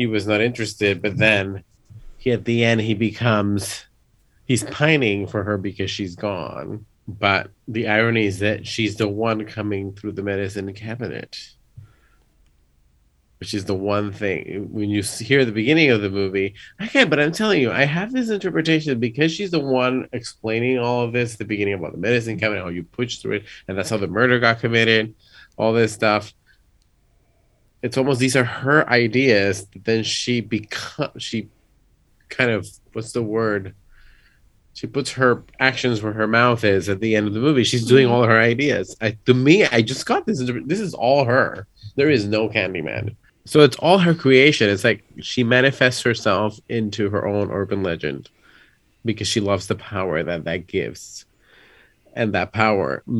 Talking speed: 180 wpm